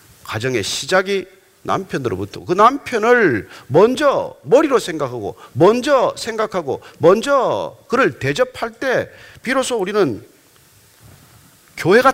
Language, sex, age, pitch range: Korean, male, 40-59, 175-285 Hz